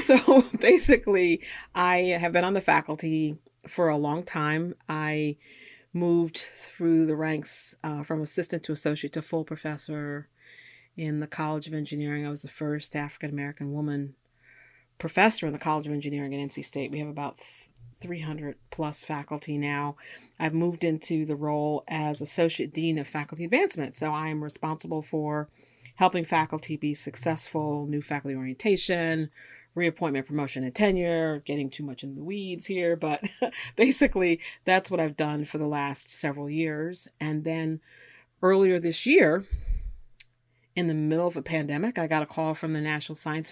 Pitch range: 145-165 Hz